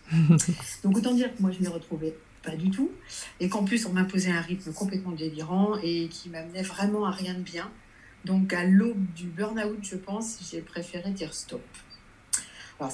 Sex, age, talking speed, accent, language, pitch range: female, 50-69, 195 wpm, French, French, 165-205 Hz